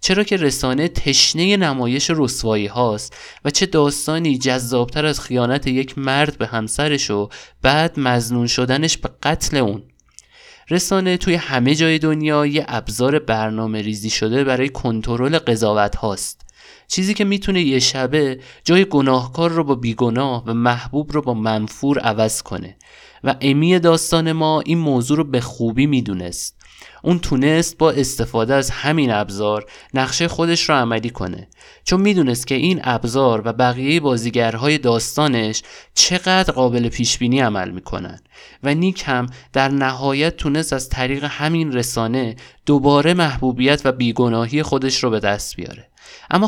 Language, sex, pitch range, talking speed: Persian, male, 120-150 Hz, 145 wpm